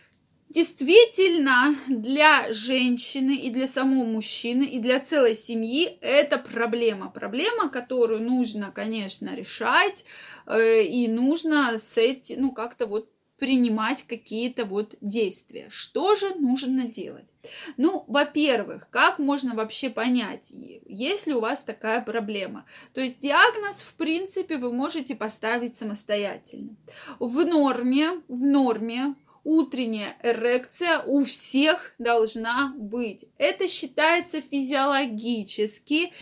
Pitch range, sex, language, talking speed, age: 230-300 Hz, female, Russian, 110 wpm, 20-39